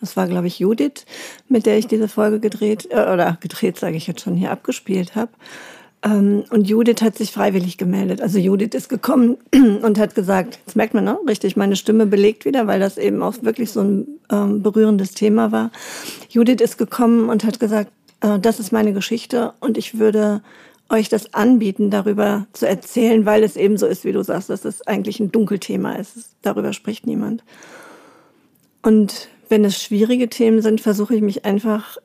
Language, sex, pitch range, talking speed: German, female, 200-225 Hz, 185 wpm